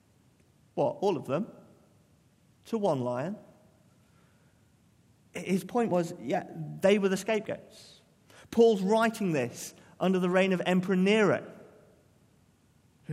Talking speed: 115 wpm